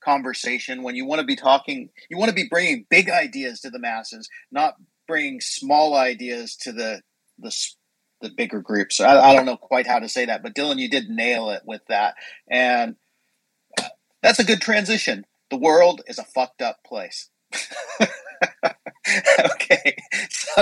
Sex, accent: male, American